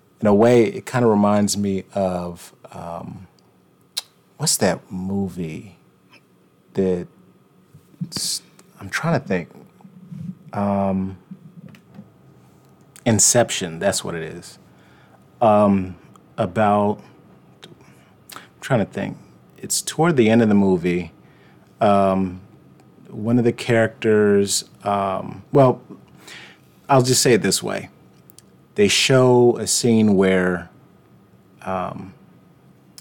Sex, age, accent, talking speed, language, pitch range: male, 30-49, American, 100 wpm, English, 95-120 Hz